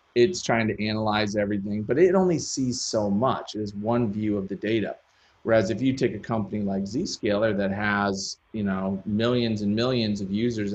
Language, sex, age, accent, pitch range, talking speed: English, male, 30-49, American, 100-120 Hz, 195 wpm